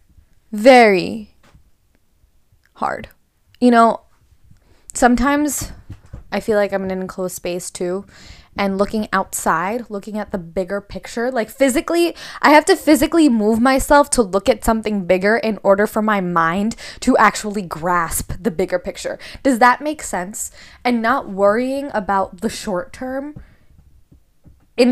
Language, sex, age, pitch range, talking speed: English, female, 10-29, 200-275 Hz, 140 wpm